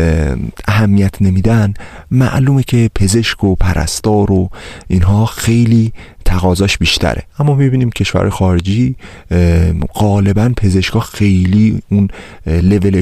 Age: 30-49